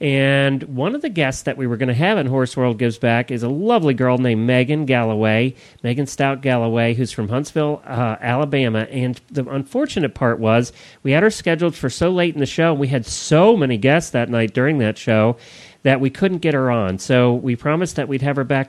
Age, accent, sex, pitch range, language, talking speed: 40-59, American, male, 115-145 Hz, English, 230 wpm